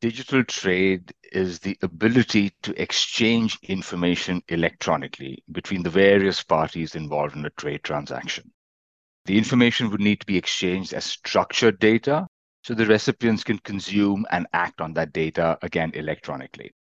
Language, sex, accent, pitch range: English, male, Indian, 90-115 Hz